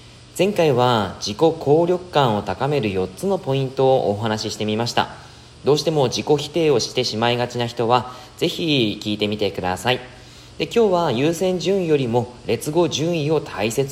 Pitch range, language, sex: 105-145 Hz, Japanese, male